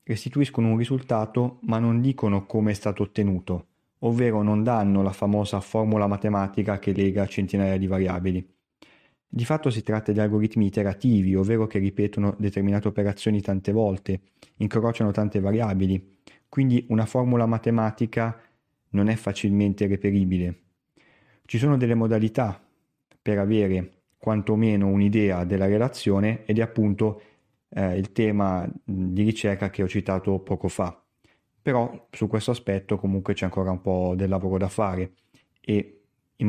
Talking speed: 140 wpm